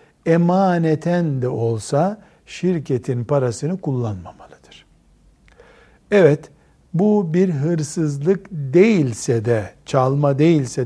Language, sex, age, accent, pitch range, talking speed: Turkish, male, 60-79, native, 130-175 Hz, 75 wpm